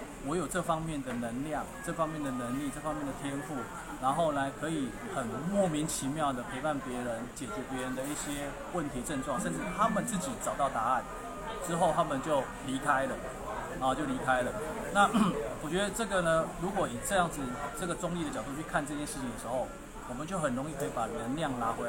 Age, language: 20-39, Chinese